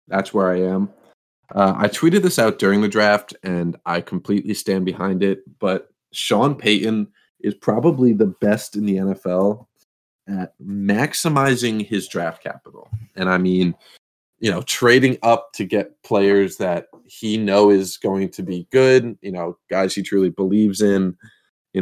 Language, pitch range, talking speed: English, 95-110 Hz, 160 wpm